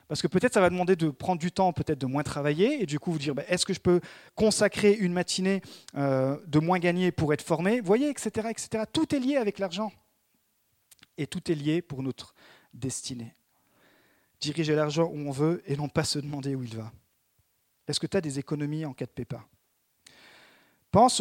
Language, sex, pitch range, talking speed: French, male, 140-200 Hz, 205 wpm